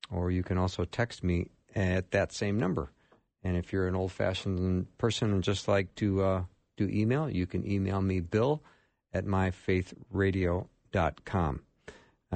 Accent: American